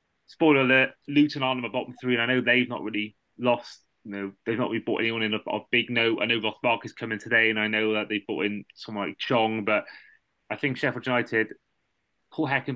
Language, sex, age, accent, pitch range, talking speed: English, male, 20-39, British, 110-125 Hz, 220 wpm